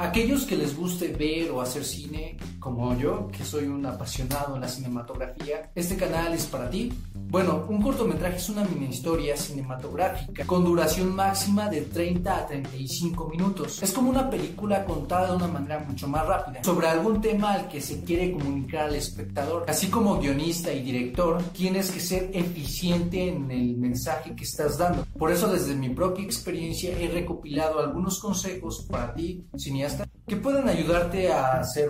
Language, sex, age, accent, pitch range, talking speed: Spanish, male, 40-59, Mexican, 135-180 Hz, 175 wpm